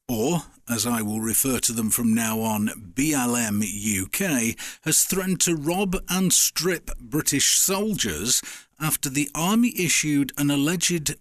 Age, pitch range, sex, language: 50-69, 125-180 Hz, male, English